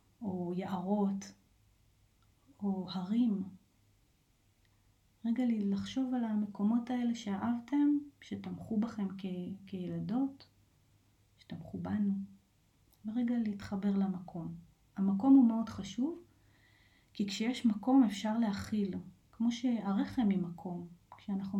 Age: 30-49